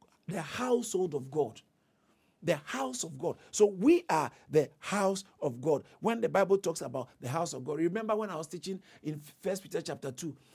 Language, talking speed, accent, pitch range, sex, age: English, 200 wpm, Nigerian, 145-210 Hz, male, 50-69